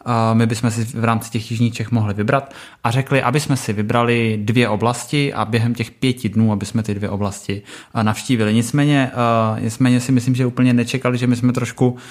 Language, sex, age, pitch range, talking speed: Czech, male, 20-39, 110-125 Hz, 195 wpm